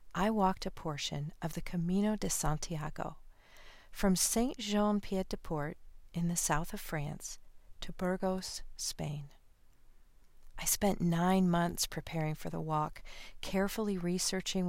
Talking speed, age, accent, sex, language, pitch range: 120 wpm, 40-59, American, female, English, 155-195 Hz